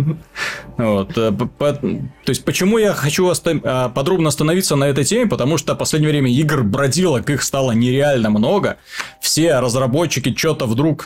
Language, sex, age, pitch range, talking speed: Russian, male, 20-39, 120-160 Hz, 135 wpm